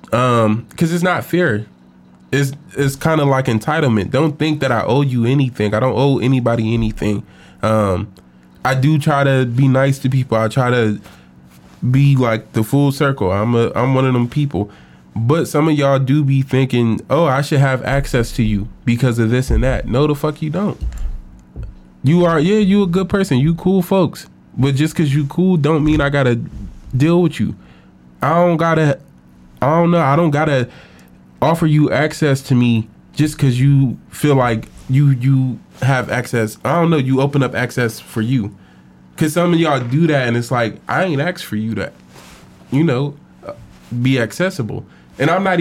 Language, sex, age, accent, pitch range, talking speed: English, male, 20-39, American, 110-155 Hz, 195 wpm